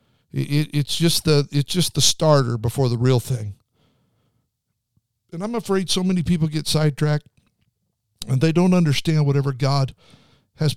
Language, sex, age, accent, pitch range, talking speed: English, male, 50-69, American, 120-165 Hz, 150 wpm